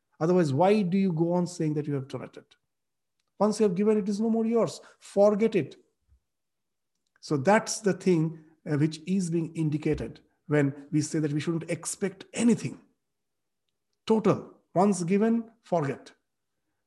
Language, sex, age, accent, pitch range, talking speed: English, male, 50-69, Indian, 155-200 Hz, 150 wpm